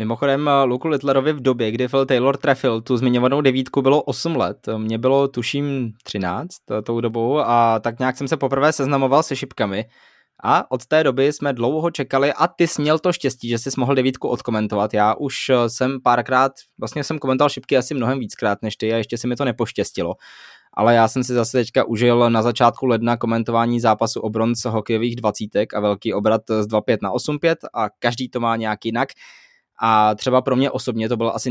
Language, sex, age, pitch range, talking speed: Czech, male, 20-39, 115-140 Hz, 195 wpm